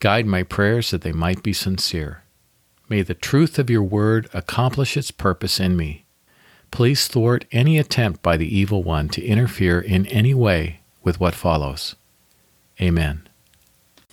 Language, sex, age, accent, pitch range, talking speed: English, male, 50-69, American, 80-110 Hz, 155 wpm